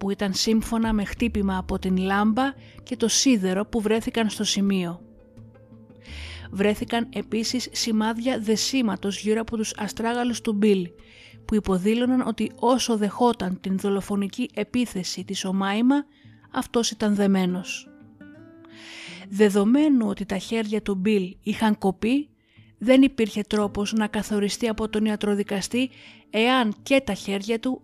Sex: female